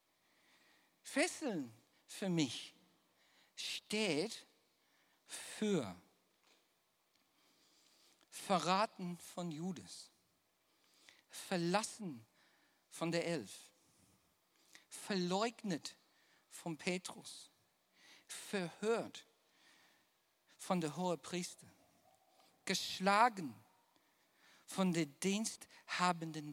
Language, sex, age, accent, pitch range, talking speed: German, male, 50-69, German, 180-285 Hz, 55 wpm